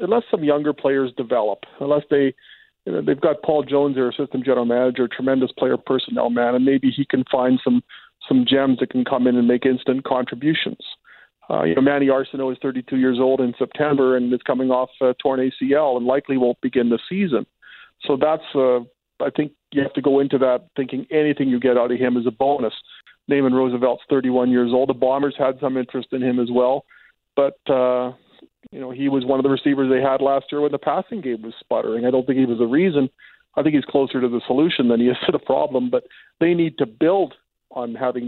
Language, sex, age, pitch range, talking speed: English, male, 40-59, 125-140 Hz, 225 wpm